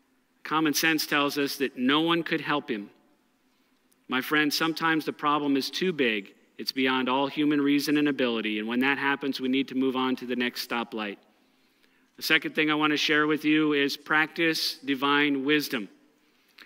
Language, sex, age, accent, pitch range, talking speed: English, male, 50-69, American, 140-170 Hz, 185 wpm